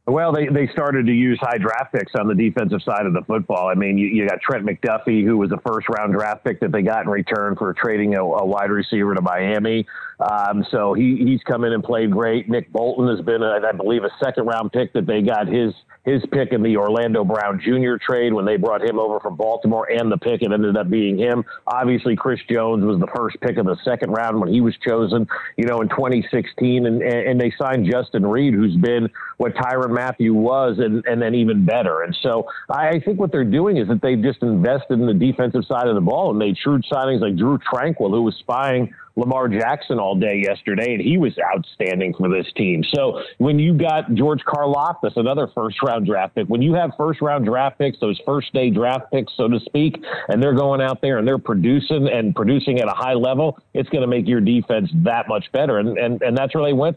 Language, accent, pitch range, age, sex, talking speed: English, American, 110-135 Hz, 50-69, male, 235 wpm